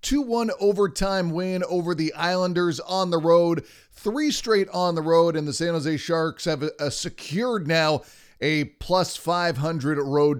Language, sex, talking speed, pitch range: English, male, 155 wpm, 145-175 Hz